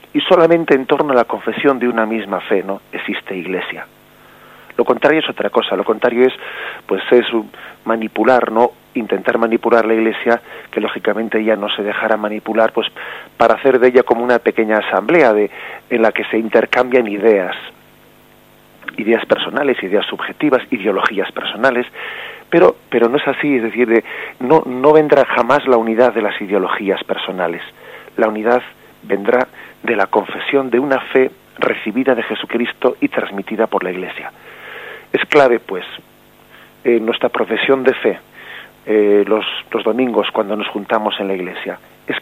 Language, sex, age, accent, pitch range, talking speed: Spanish, male, 40-59, Spanish, 110-135 Hz, 160 wpm